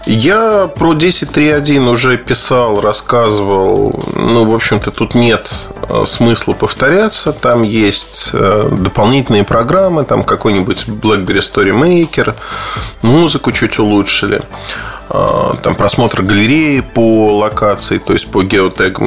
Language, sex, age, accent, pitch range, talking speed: Russian, male, 20-39, native, 100-140 Hz, 105 wpm